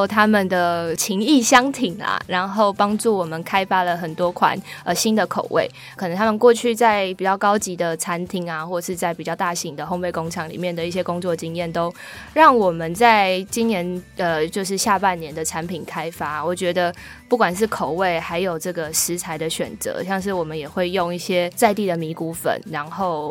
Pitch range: 170-210 Hz